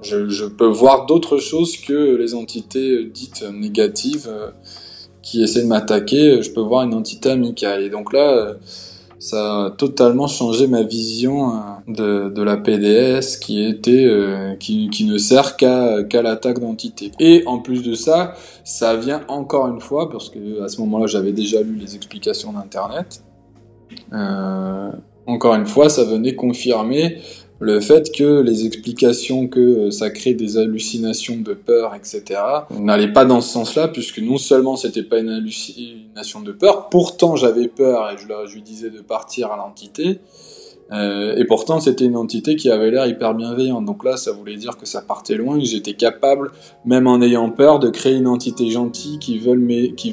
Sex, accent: male, French